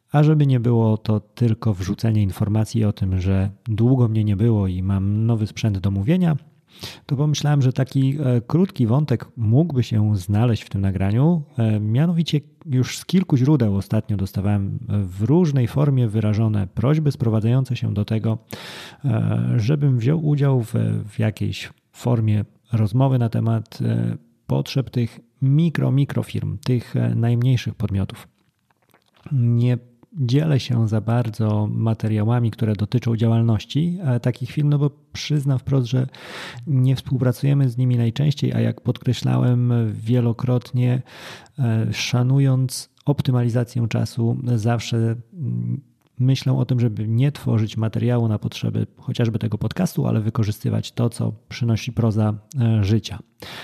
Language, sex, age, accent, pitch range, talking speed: Polish, male, 30-49, native, 110-130 Hz, 130 wpm